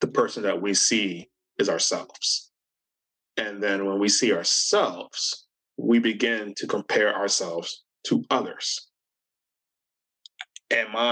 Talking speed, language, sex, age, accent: 115 wpm, English, male, 20-39, American